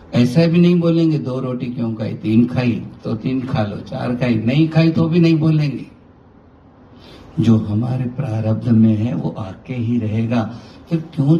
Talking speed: 175 wpm